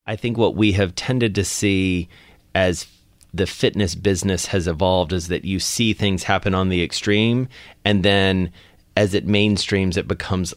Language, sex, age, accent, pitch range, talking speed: English, male, 30-49, American, 90-105 Hz, 170 wpm